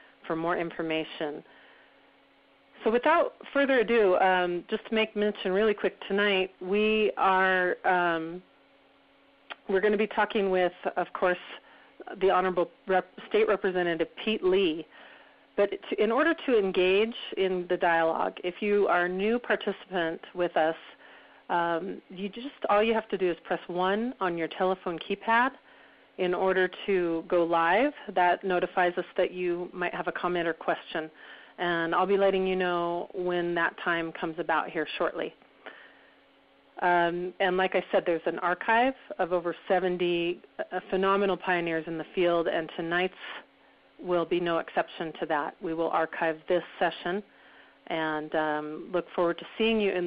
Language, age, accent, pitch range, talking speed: English, 40-59, American, 170-200 Hz, 150 wpm